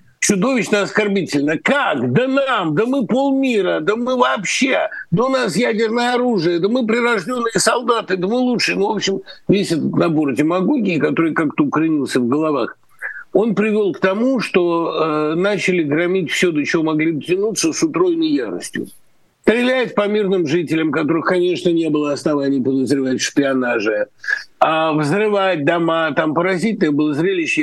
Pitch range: 155-225 Hz